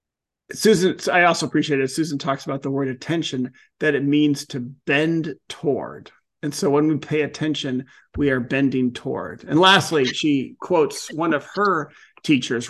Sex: male